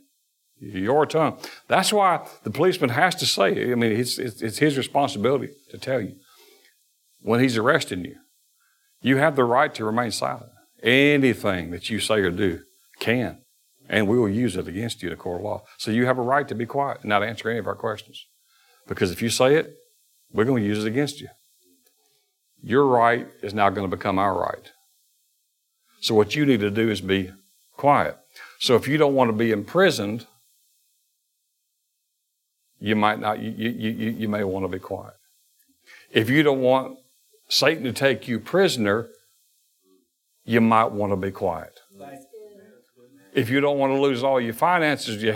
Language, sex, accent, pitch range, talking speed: English, male, American, 110-145 Hz, 185 wpm